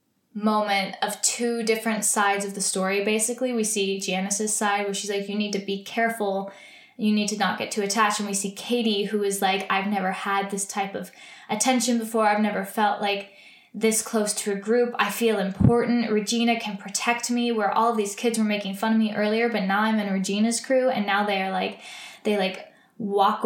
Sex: female